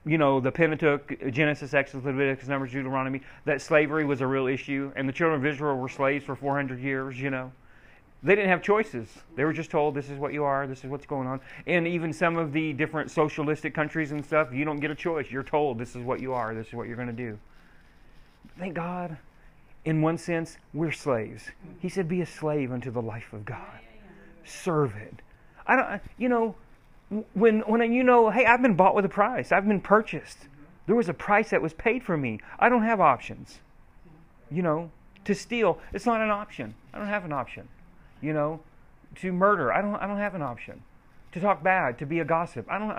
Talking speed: 220 wpm